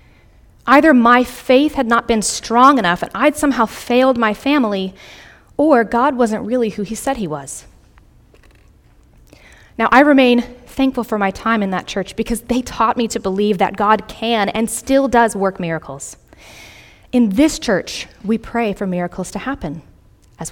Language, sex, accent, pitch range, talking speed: English, female, American, 195-260 Hz, 165 wpm